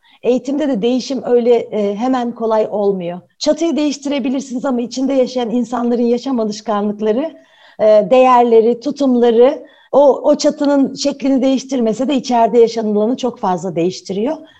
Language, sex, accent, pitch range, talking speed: Turkish, female, native, 210-275 Hz, 115 wpm